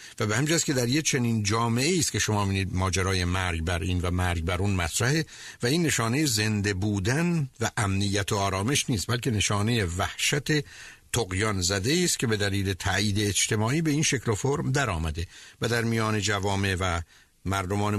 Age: 60-79